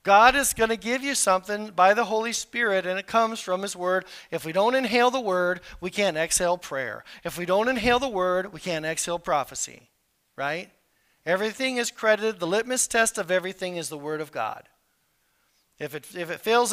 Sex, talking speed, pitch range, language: male, 195 wpm, 175-245 Hz, English